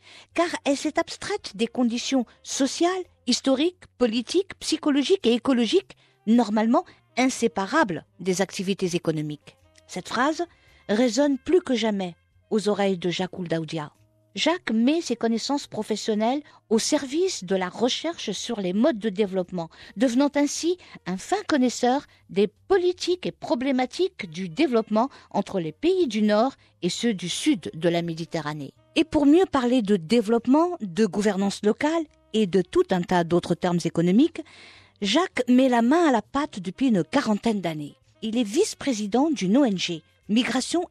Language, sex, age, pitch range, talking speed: French, female, 50-69, 195-295 Hz, 145 wpm